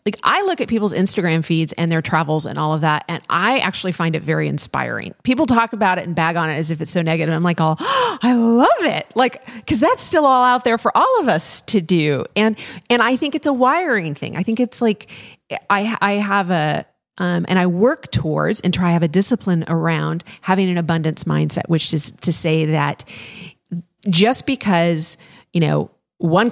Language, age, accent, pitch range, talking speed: English, 40-59, American, 165-210 Hz, 215 wpm